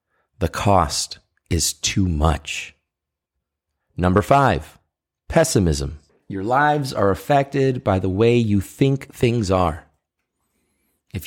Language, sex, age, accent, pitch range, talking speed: English, male, 30-49, American, 85-120 Hz, 105 wpm